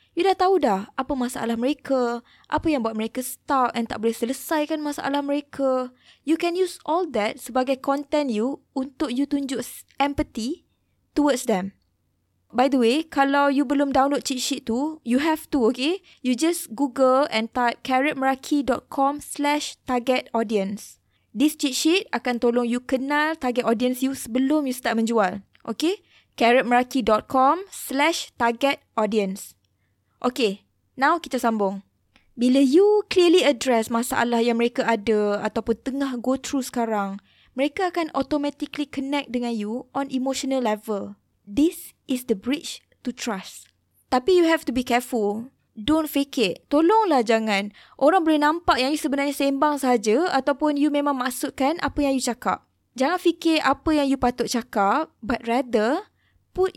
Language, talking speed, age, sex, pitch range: Malay, 150 wpm, 20-39, female, 235-295 Hz